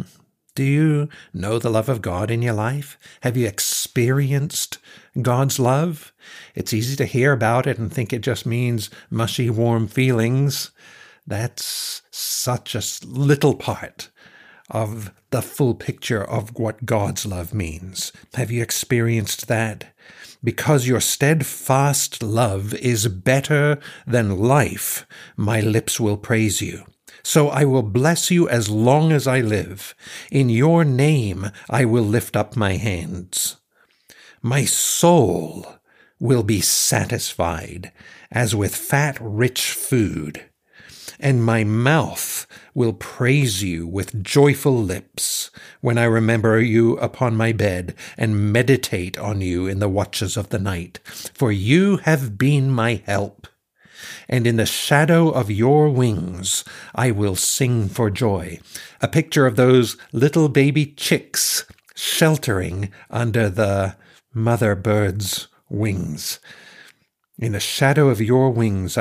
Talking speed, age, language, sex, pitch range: 130 wpm, 60-79, English, male, 105-135 Hz